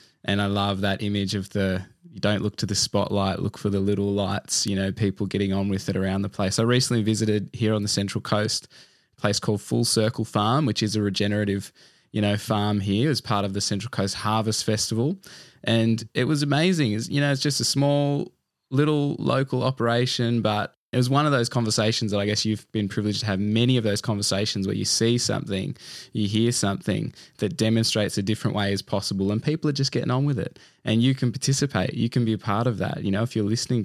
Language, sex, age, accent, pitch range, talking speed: English, male, 10-29, Australian, 100-120 Hz, 225 wpm